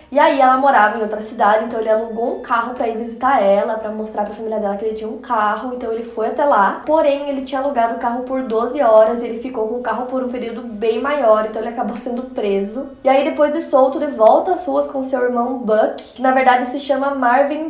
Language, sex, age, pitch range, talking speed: Portuguese, female, 10-29, 220-275 Hz, 260 wpm